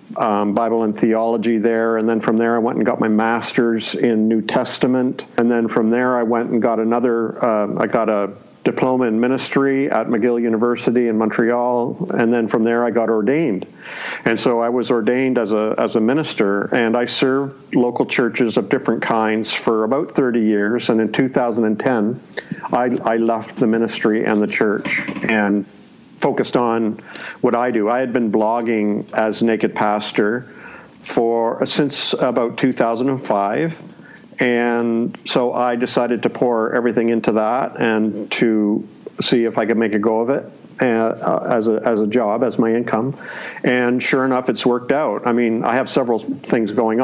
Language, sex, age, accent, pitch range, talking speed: English, male, 50-69, American, 110-125 Hz, 175 wpm